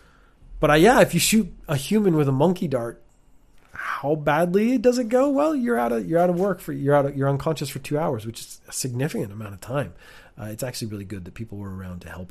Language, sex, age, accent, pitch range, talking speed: English, male, 30-49, American, 120-165 Hz, 255 wpm